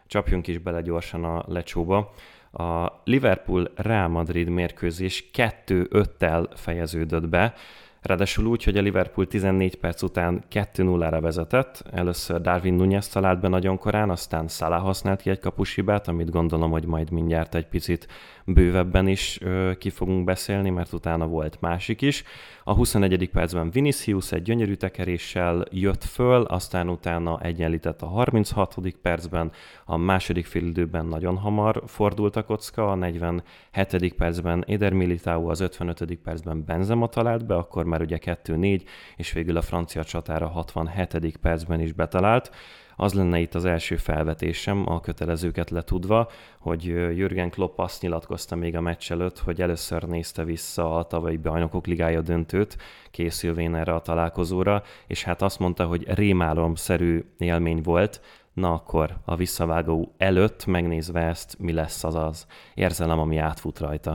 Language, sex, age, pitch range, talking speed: Hungarian, male, 30-49, 85-95 Hz, 150 wpm